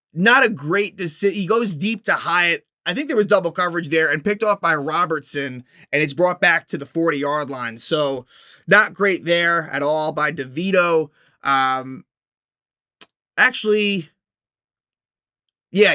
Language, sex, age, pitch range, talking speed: English, male, 20-39, 150-190 Hz, 155 wpm